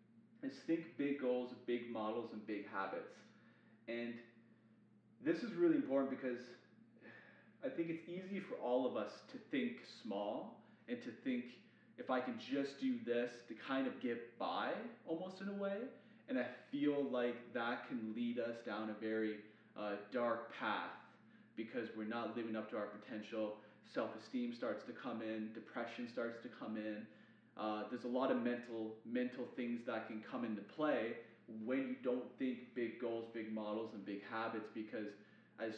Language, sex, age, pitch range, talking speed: English, male, 30-49, 110-125 Hz, 170 wpm